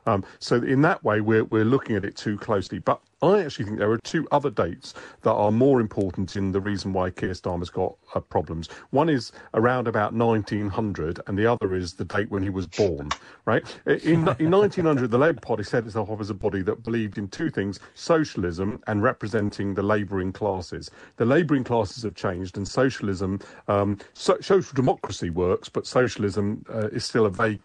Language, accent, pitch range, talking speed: English, British, 100-125 Hz, 200 wpm